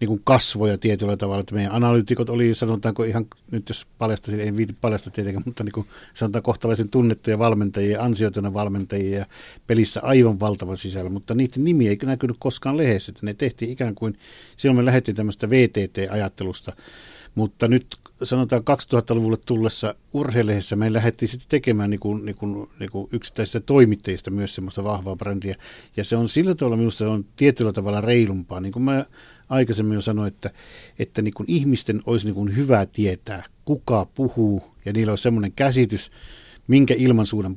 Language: Finnish